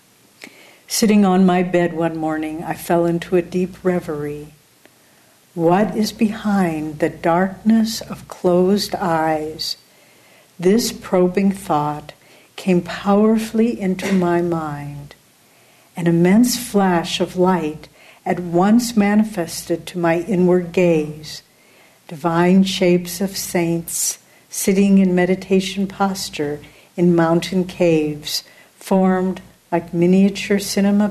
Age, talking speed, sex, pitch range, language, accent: 60-79, 105 wpm, female, 165-195 Hz, English, American